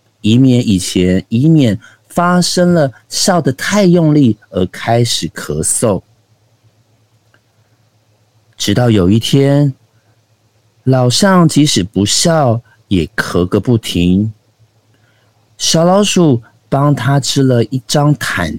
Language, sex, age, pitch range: Chinese, male, 50-69, 105-130 Hz